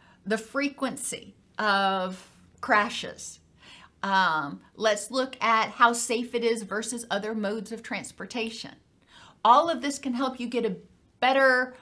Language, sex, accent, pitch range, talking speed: English, female, American, 215-265 Hz, 130 wpm